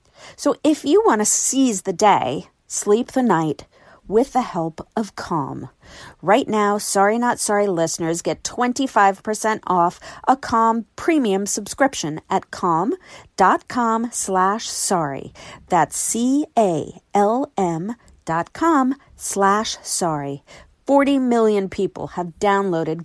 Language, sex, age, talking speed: English, female, 40-59, 115 wpm